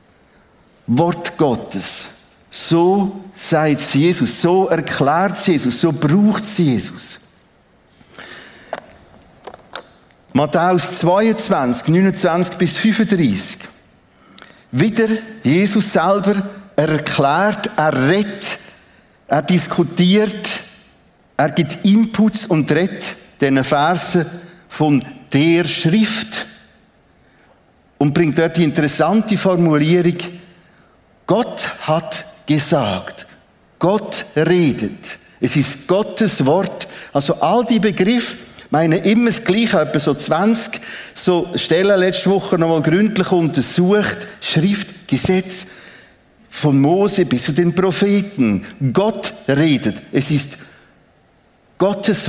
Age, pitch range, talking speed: 50-69, 150-200 Hz, 95 wpm